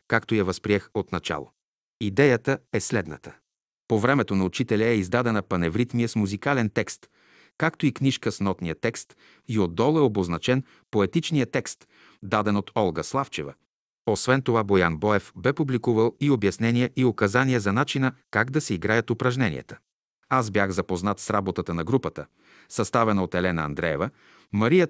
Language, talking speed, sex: Bulgarian, 150 wpm, male